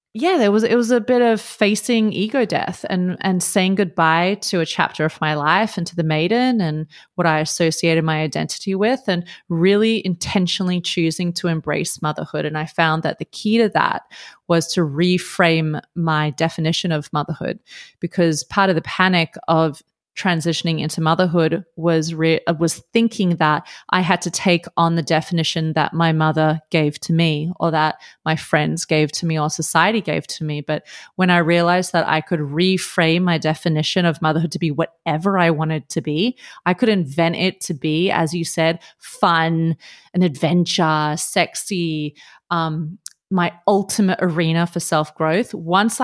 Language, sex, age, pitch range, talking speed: English, female, 30-49, 160-200 Hz, 170 wpm